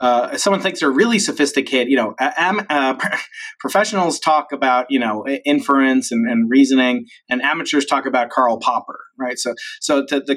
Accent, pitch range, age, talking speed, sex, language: American, 130-195 Hz, 30-49, 175 wpm, male, English